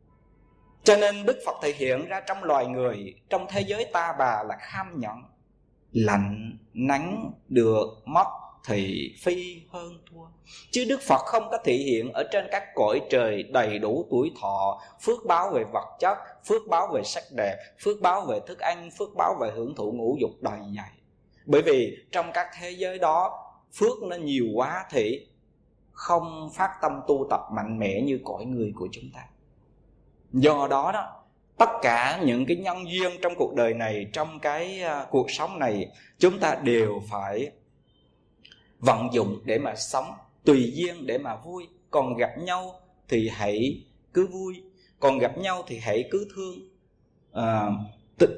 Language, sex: Vietnamese, male